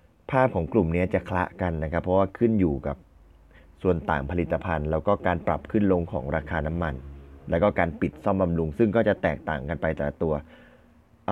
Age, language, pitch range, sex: 20-39, Thai, 80-100 Hz, male